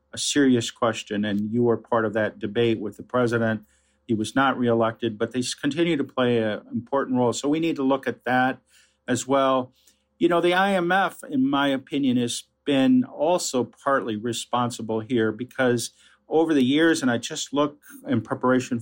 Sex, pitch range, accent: male, 120-150 Hz, American